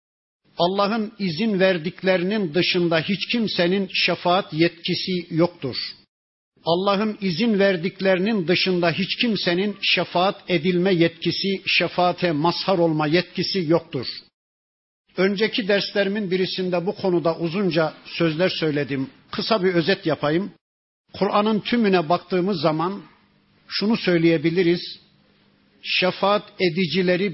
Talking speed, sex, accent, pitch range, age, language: 95 wpm, male, native, 165-190 Hz, 50-69, Turkish